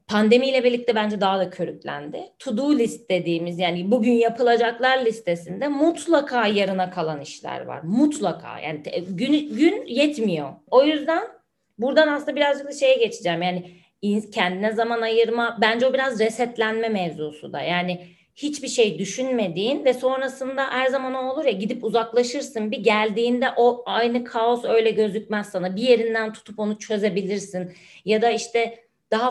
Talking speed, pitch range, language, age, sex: 145 wpm, 190-260 Hz, Turkish, 30-49, female